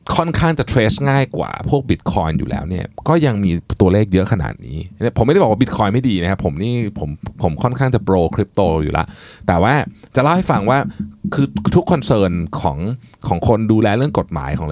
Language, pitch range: Thai, 85-125 Hz